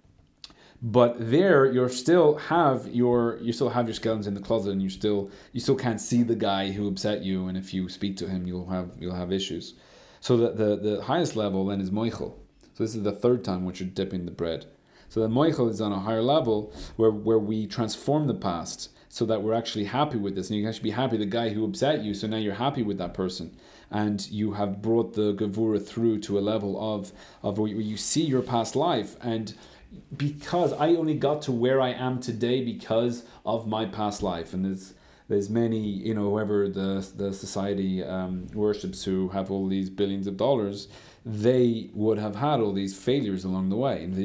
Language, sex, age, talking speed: English, male, 30-49, 220 wpm